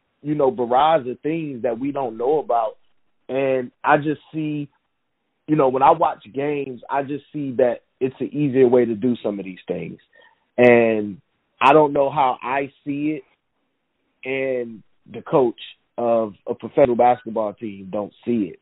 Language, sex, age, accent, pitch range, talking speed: English, male, 30-49, American, 120-145 Hz, 170 wpm